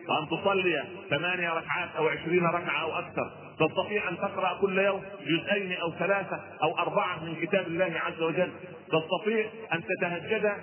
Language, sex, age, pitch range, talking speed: Arabic, male, 40-59, 165-205 Hz, 150 wpm